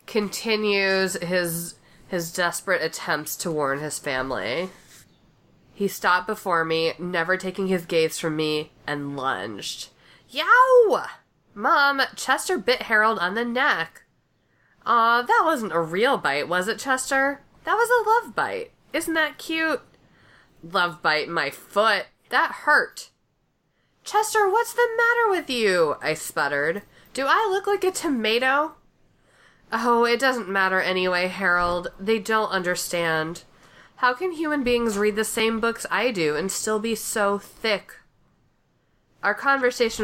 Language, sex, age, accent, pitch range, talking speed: English, female, 20-39, American, 170-250 Hz, 140 wpm